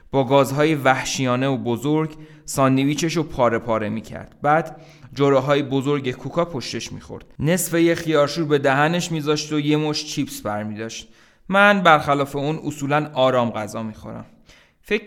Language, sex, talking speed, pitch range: Persian, male, 140 wpm, 125-165 Hz